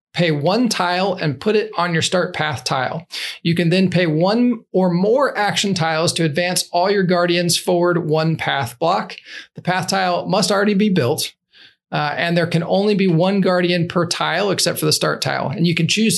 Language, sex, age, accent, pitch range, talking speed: English, male, 40-59, American, 165-195 Hz, 205 wpm